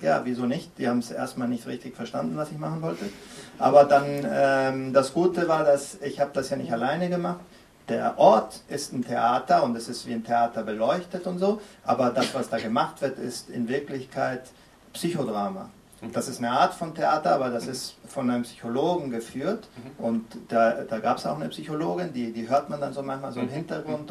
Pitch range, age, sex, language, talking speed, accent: 115-150 Hz, 40-59, male, German, 205 wpm, German